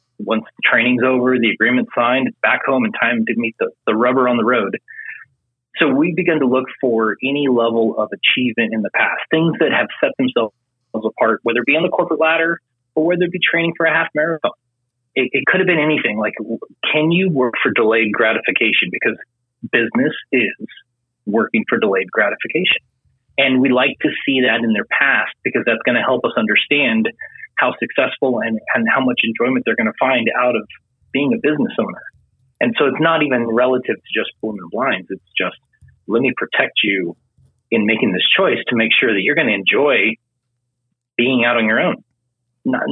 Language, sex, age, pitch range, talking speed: English, male, 30-49, 120-160 Hz, 200 wpm